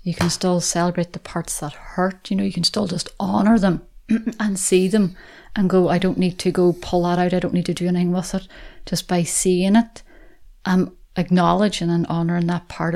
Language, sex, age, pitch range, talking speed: English, female, 30-49, 170-190 Hz, 220 wpm